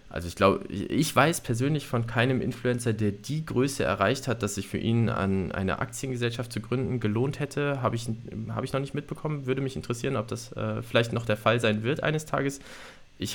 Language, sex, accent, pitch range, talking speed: German, male, German, 110-135 Hz, 205 wpm